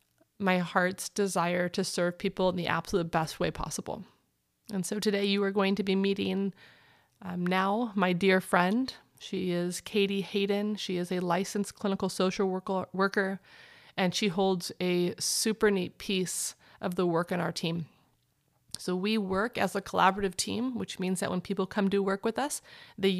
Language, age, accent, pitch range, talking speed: English, 30-49, American, 185-210 Hz, 175 wpm